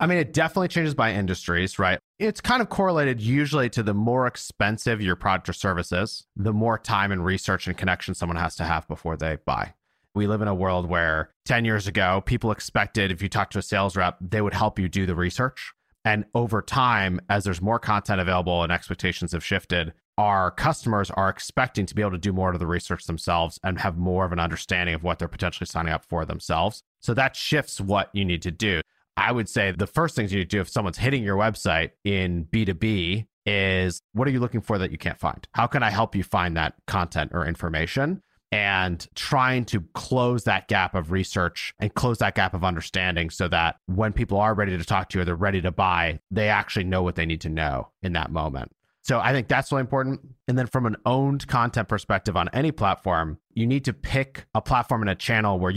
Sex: male